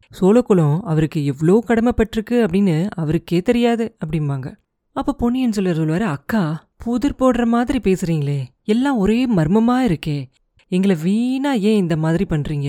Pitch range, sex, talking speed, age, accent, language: 165-225 Hz, female, 130 wpm, 30-49, native, Tamil